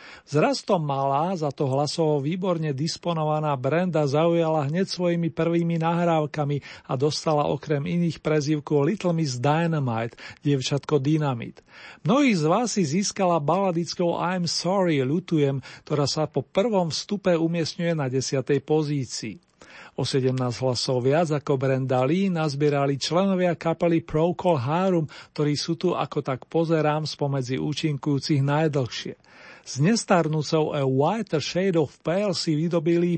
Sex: male